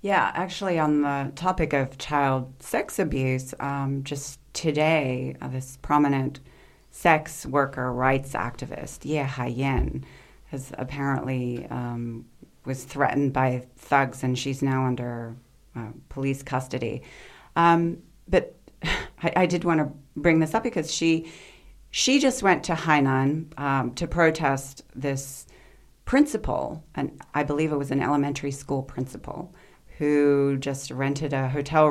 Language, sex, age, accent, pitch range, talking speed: English, female, 40-59, American, 130-150 Hz, 130 wpm